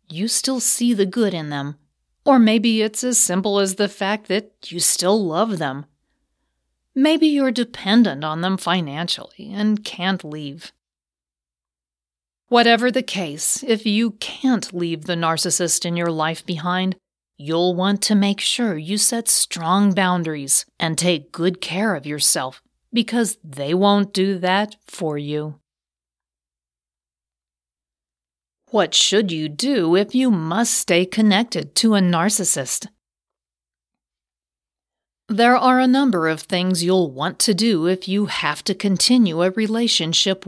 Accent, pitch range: American, 155-215 Hz